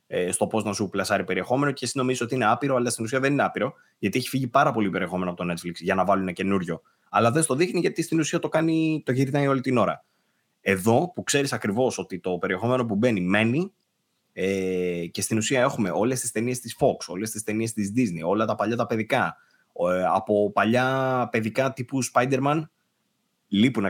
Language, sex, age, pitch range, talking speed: Greek, male, 20-39, 95-125 Hz, 200 wpm